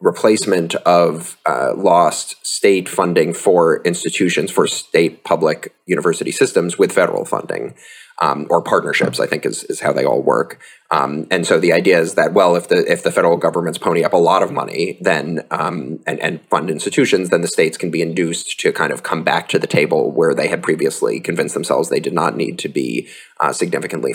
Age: 30-49